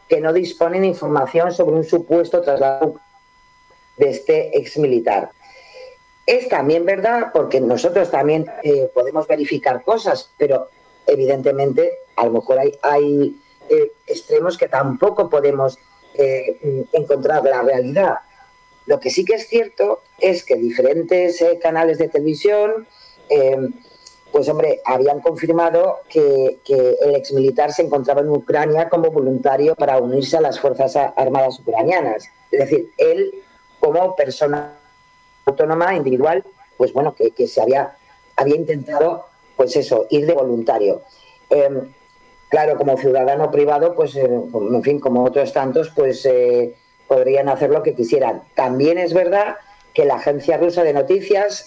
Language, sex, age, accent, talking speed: Spanish, female, 40-59, Spanish, 140 wpm